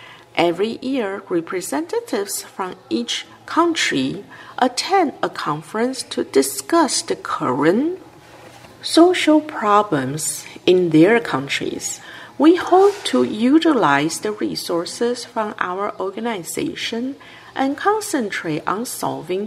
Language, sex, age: Chinese, female, 50-69